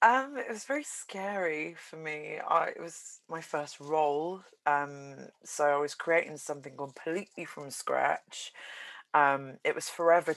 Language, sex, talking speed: English, female, 145 wpm